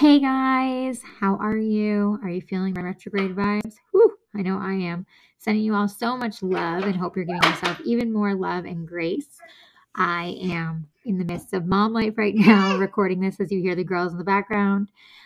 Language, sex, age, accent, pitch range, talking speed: English, female, 20-39, American, 185-225 Hz, 200 wpm